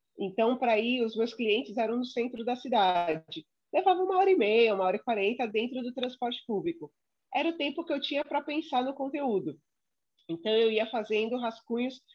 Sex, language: female, English